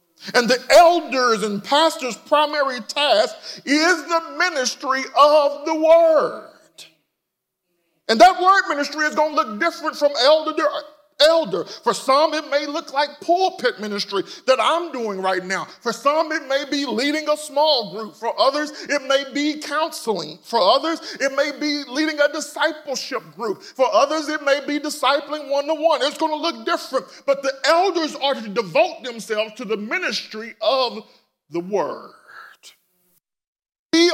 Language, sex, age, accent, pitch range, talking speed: English, male, 40-59, American, 210-305 Hz, 155 wpm